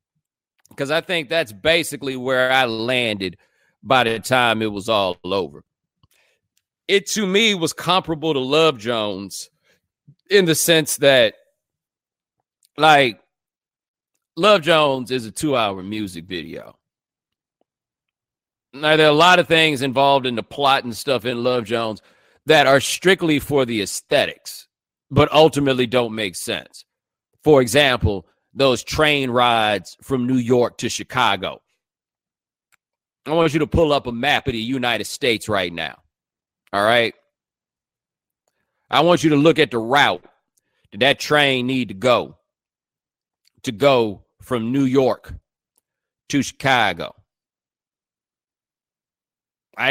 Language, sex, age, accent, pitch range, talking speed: English, male, 40-59, American, 120-155 Hz, 130 wpm